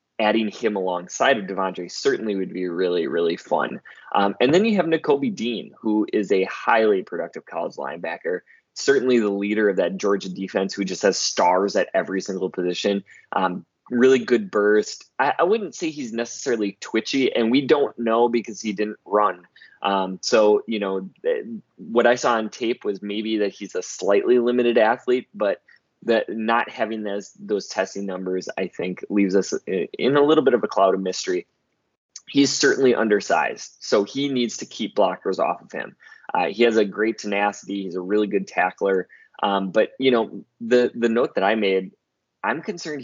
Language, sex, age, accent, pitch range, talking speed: English, male, 20-39, American, 95-120 Hz, 185 wpm